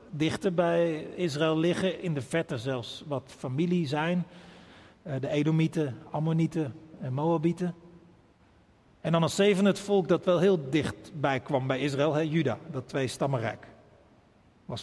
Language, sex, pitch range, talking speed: Dutch, male, 140-190 Hz, 140 wpm